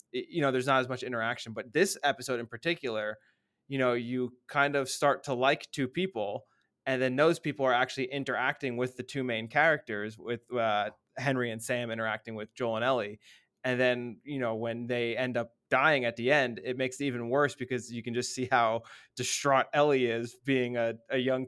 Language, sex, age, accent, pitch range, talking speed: English, male, 20-39, American, 120-145 Hz, 205 wpm